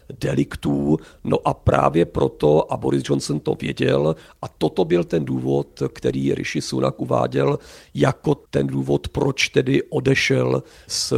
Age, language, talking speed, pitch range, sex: 50-69, Czech, 140 wpm, 65-80 Hz, male